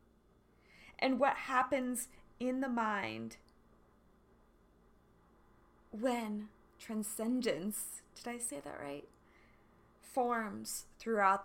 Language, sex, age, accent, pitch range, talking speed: English, female, 20-39, American, 195-245 Hz, 80 wpm